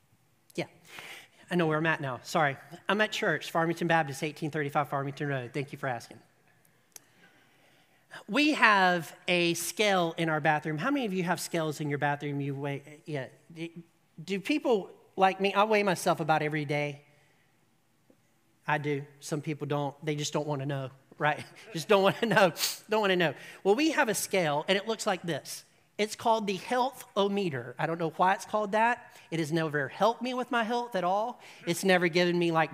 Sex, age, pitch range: male, 40-59, 150-200 Hz